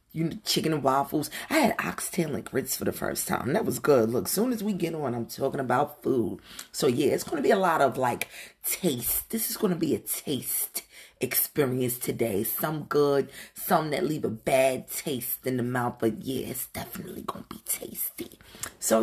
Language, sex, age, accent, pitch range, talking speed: English, female, 30-49, American, 135-175 Hz, 215 wpm